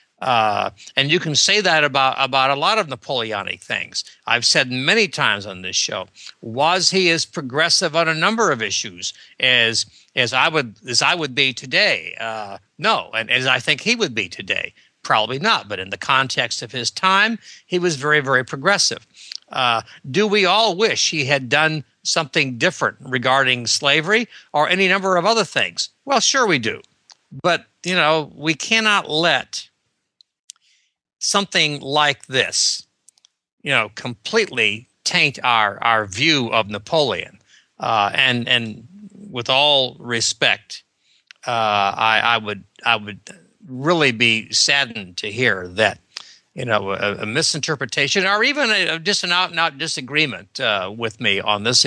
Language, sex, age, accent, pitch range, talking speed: English, male, 60-79, American, 115-170 Hz, 160 wpm